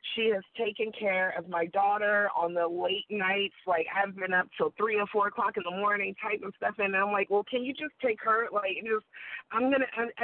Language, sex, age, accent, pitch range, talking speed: English, female, 30-49, American, 170-235 Hz, 235 wpm